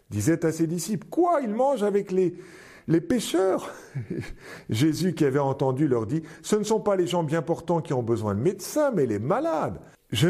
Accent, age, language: French, 50-69, French